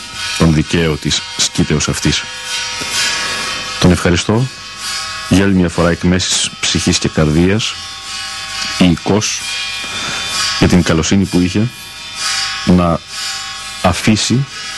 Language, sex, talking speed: Greek, male, 100 wpm